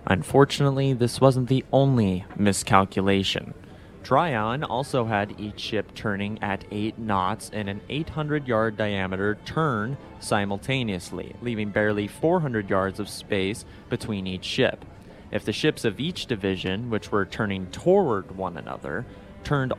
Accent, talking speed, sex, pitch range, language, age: American, 130 wpm, male, 95-120 Hz, English, 30-49